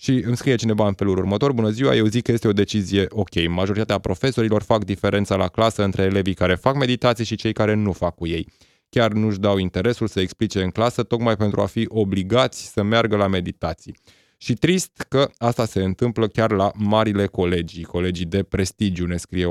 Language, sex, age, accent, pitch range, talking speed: Romanian, male, 20-39, native, 95-115 Hz, 205 wpm